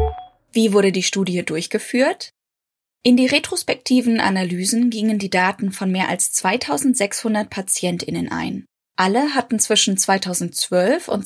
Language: German